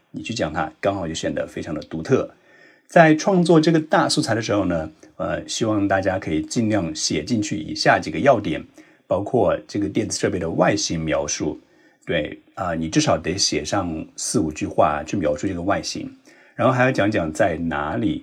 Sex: male